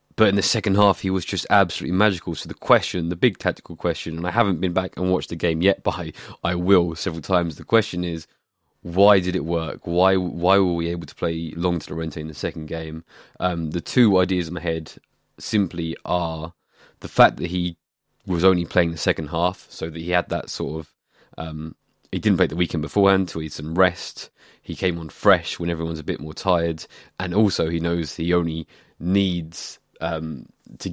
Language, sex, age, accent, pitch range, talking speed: English, male, 20-39, British, 80-95 Hz, 215 wpm